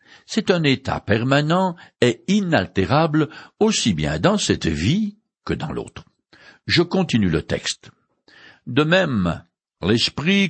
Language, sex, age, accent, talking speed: French, male, 60-79, French, 120 wpm